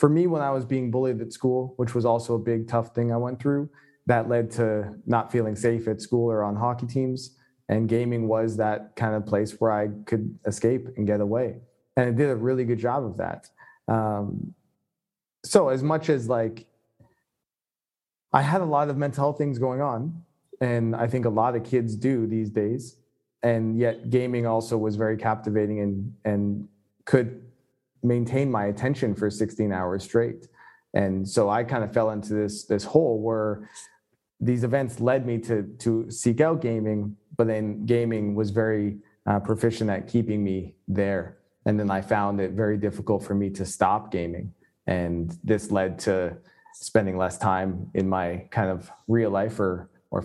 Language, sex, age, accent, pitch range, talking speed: English, male, 20-39, American, 105-120 Hz, 185 wpm